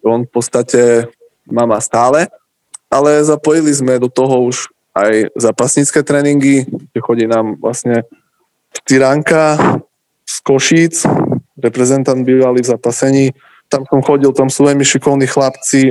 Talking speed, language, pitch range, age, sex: 120 wpm, Slovak, 125-140 Hz, 20-39, male